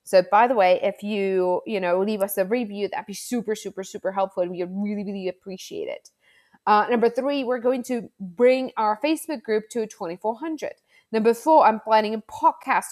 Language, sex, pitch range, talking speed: English, female, 205-275 Hz, 200 wpm